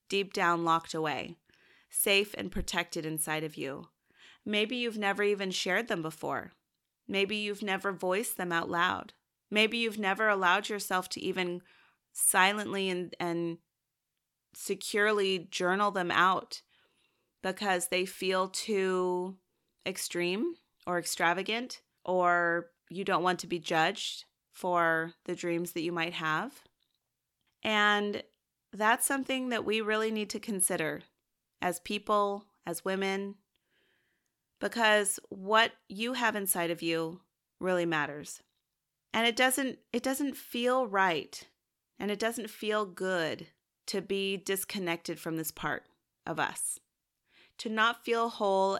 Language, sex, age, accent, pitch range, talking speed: English, female, 30-49, American, 175-210 Hz, 130 wpm